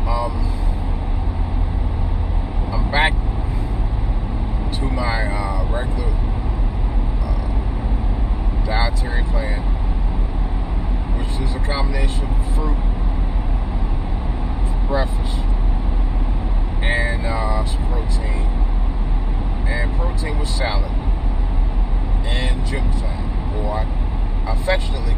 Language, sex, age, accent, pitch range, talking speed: English, male, 30-49, American, 85-105 Hz, 75 wpm